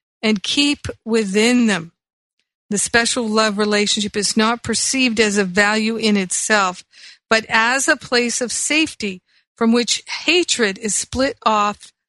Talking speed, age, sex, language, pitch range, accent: 140 wpm, 50-69, female, English, 205-235 Hz, American